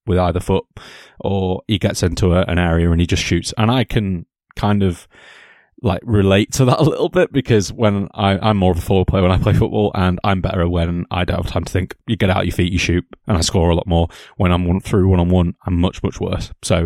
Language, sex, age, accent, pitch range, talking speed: English, male, 20-39, British, 90-105 Hz, 265 wpm